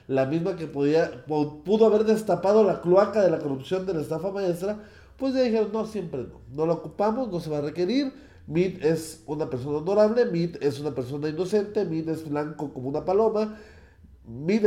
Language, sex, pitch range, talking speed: Spanish, male, 130-185 Hz, 190 wpm